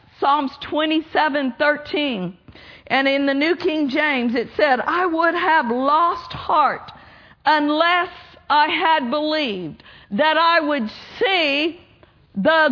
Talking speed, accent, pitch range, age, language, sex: 120 wpm, American, 235-330 Hz, 50-69, English, female